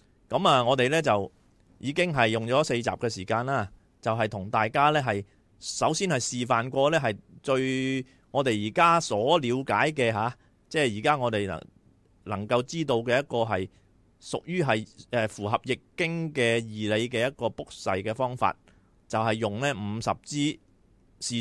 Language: Chinese